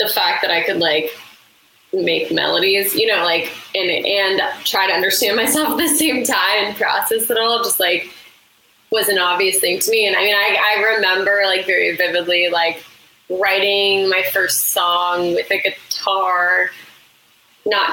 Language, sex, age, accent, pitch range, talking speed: English, female, 20-39, American, 185-235 Hz, 170 wpm